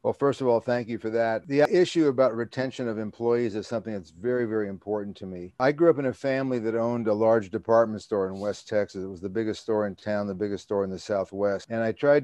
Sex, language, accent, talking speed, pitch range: male, English, American, 260 wpm, 100-115 Hz